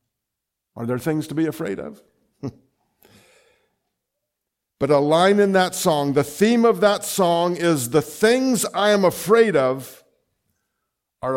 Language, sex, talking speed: English, male, 135 wpm